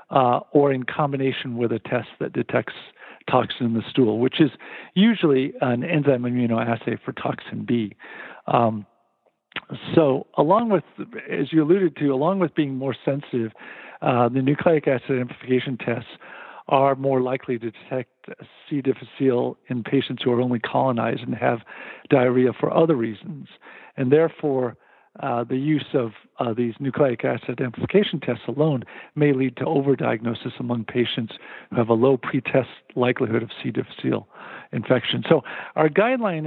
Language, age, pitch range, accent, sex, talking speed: English, 50-69, 125-150 Hz, American, male, 150 wpm